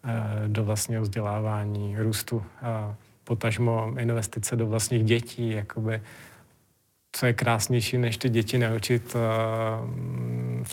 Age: 30-49